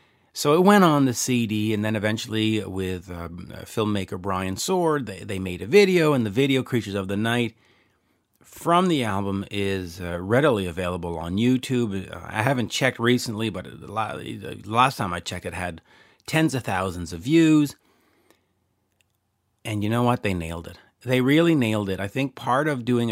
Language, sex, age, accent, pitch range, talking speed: English, male, 40-59, American, 95-125 Hz, 175 wpm